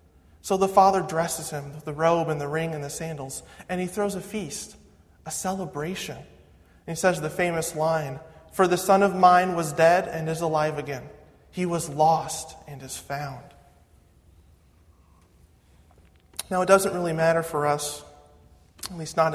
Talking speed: 165 wpm